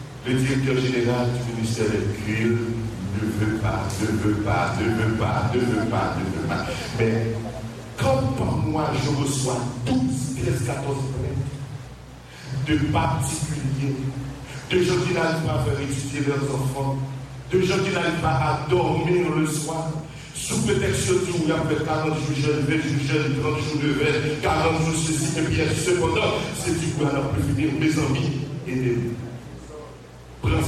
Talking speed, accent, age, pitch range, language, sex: 170 wpm, French, 60-79, 120-160 Hz, English, male